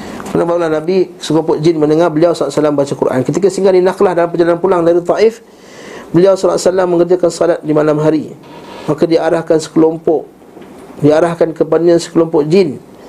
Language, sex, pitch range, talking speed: Malay, male, 150-175 Hz, 145 wpm